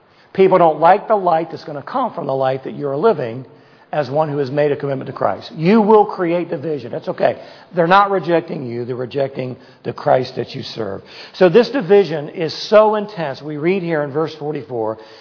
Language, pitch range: English, 135-175 Hz